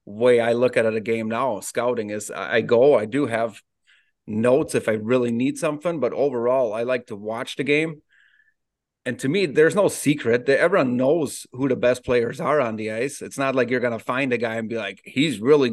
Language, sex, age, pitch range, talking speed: English, male, 30-49, 120-140 Hz, 230 wpm